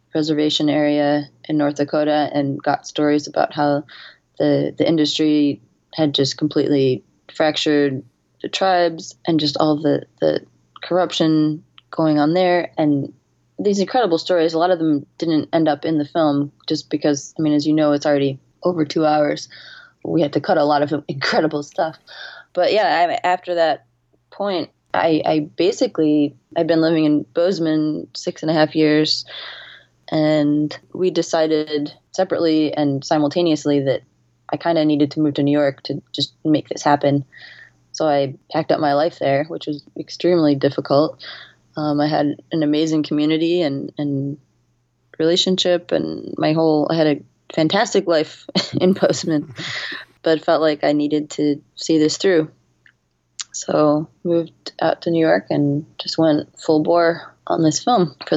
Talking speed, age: 160 wpm, 20-39